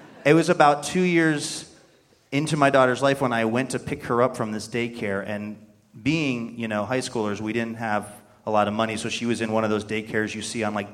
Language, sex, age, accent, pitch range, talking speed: English, male, 30-49, American, 105-135 Hz, 240 wpm